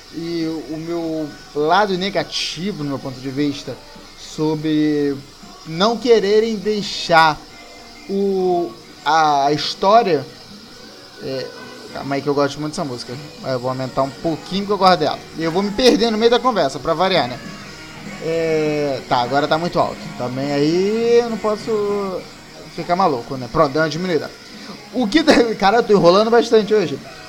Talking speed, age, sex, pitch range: 160 wpm, 20-39, male, 150-205 Hz